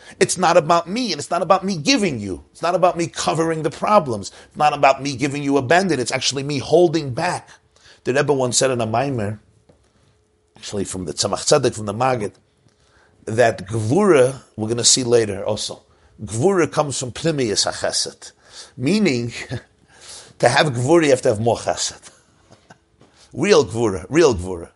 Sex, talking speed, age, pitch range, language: male, 170 wpm, 50-69, 105-155 Hz, English